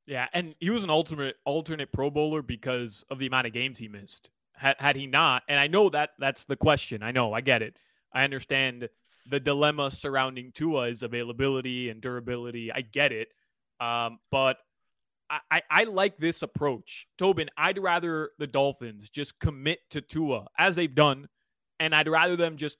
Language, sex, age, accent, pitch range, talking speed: English, male, 20-39, American, 135-165 Hz, 185 wpm